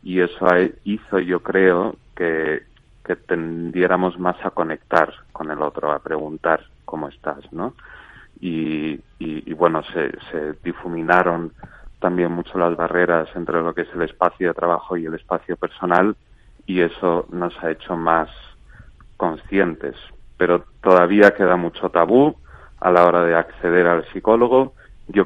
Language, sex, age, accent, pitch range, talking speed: Spanish, male, 30-49, Spanish, 85-95 Hz, 145 wpm